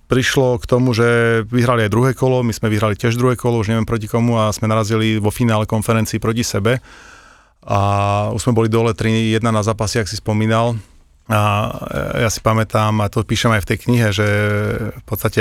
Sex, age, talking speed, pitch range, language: male, 30-49, 200 wpm, 110-120 Hz, Slovak